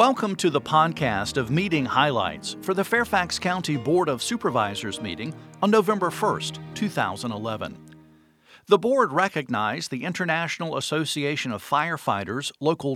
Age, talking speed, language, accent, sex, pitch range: 50-69, 130 wpm, English, American, male, 125-180 Hz